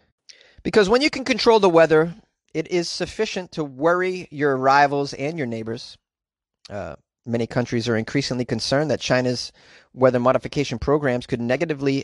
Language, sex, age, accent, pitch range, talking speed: English, male, 30-49, American, 120-160 Hz, 150 wpm